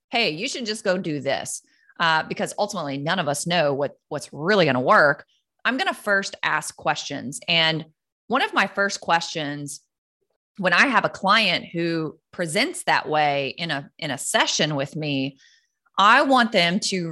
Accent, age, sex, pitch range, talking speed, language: American, 30-49, female, 155-215 Hz, 180 wpm, English